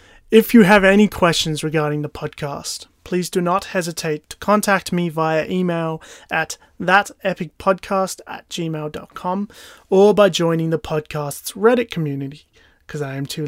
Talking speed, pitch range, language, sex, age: 145 wpm, 150-180 Hz, English, male, 30-49